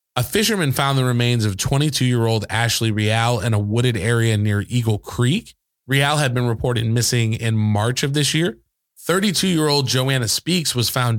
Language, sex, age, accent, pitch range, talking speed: English, male, 20-39, American, 115-135 Hz, 170 wpm